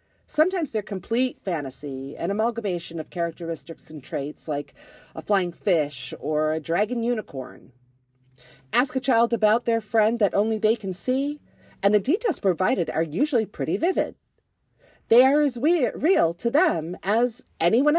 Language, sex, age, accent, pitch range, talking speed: English, female, 40-59, American, 175-265 Hz, 150 wpm